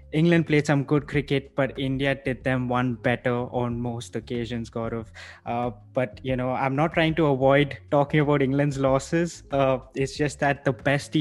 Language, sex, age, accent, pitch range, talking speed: English, male, 20-39, Indian, 125-145 Hz, 180 wpm